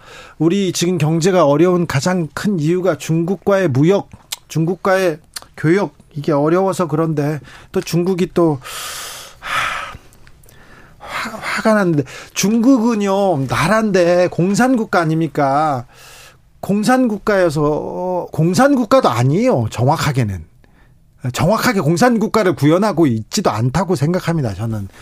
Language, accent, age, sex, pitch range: Korean, native, 40-59, male, 145-200 Hz